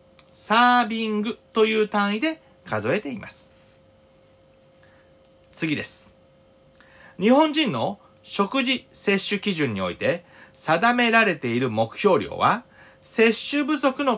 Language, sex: Japanese, male